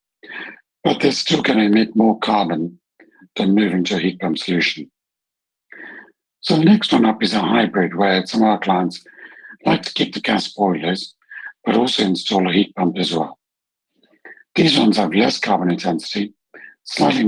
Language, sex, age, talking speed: English, male, 60-79, 170 wpm